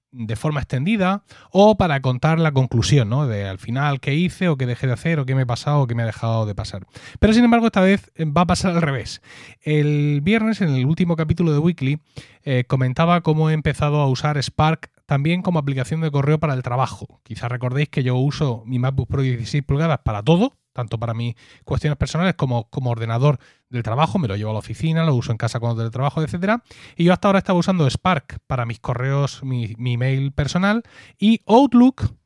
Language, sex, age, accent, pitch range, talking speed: Spanish, male, 30-49, Spanish, 130-175 Hz, 220 wpm